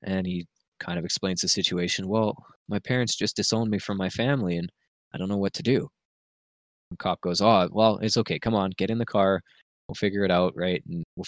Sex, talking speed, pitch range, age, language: male, 230 wpm, 90-110 Hz, 20-39, English